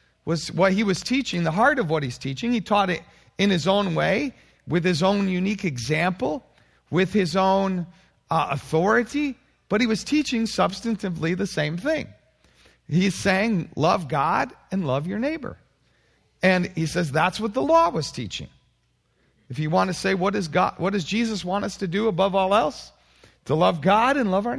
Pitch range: 155-210 Hz